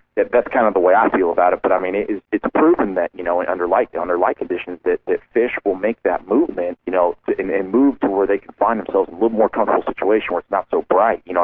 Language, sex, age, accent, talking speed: English, male, 40-59, American, 280 wpm